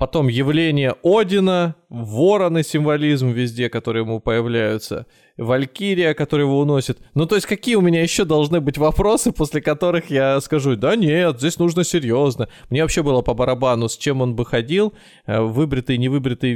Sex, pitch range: male, 120-170 Hz